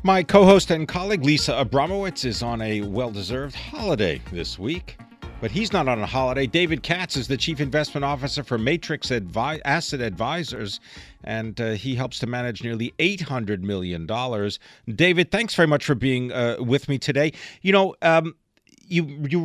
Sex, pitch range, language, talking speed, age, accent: male, 110-150 Hz, English, 170 wpm, 50-69, American